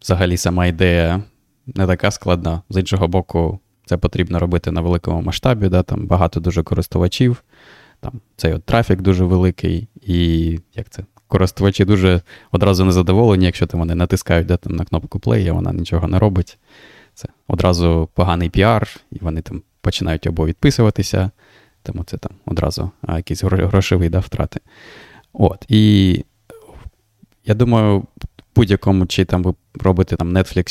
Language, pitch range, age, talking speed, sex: Ukrainian, 90-105 Hz, 20-39, 150 wpm, male